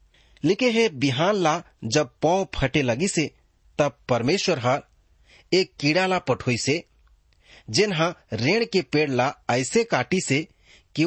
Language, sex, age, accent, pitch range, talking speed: English, male, 30-49, Indian, 115-165 Hz, 125 wpm